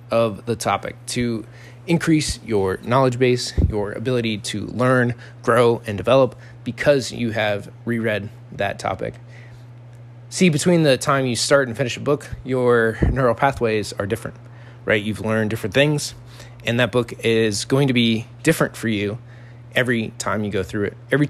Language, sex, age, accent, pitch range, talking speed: English, male, 20-39, American, 110-130 Hz, 165 wpm